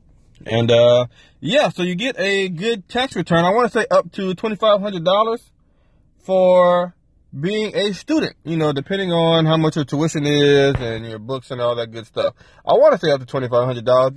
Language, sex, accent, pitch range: English, male, American, 120-175 Hz